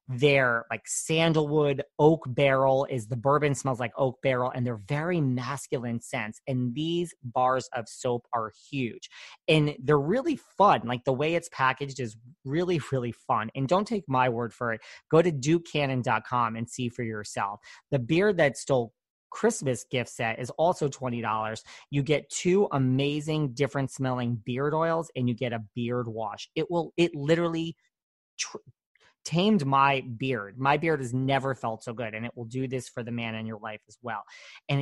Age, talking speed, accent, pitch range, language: 30-49, 180 wpm, American, 125-155 Hz, English